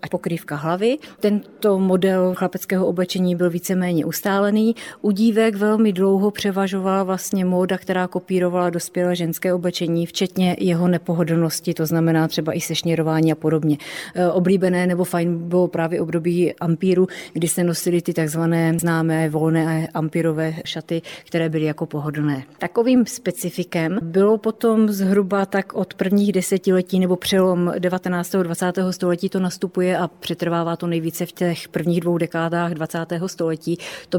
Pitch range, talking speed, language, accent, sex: 170-200 Hz, 140 wpm, Czech, native, female